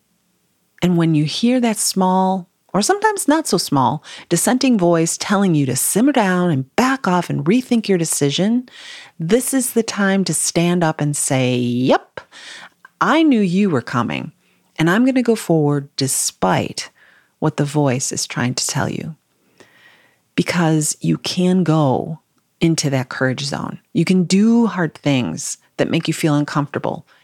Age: 40-59